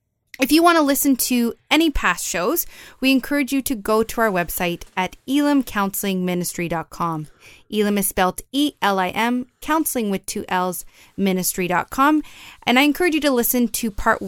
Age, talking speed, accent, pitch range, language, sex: 20-39, 150 wpm, American, 185-250 Hz, English, female